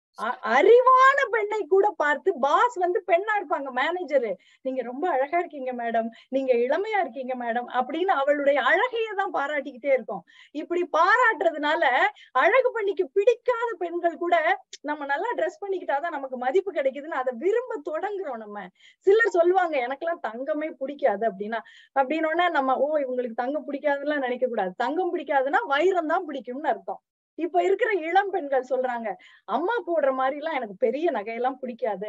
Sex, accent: female, native